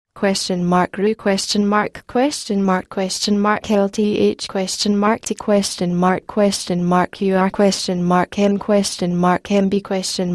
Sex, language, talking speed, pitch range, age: female, English, 160 wpm, 185-210 Hz, 10-29